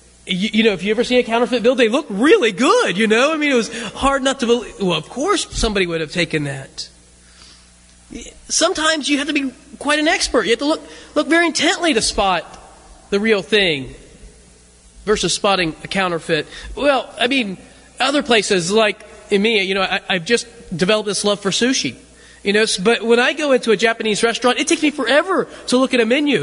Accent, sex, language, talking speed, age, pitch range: American, male, English, 210 wpm, 30-49, 195-290 Hz